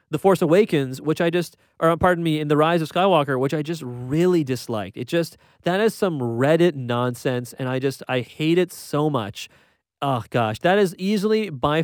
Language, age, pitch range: English, 30-49, 125-165 Hz